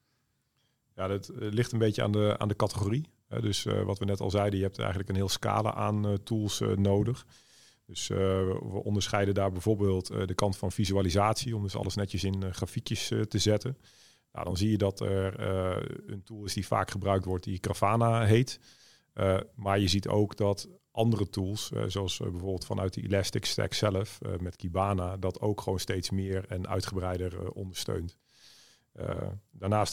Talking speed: 190 wpm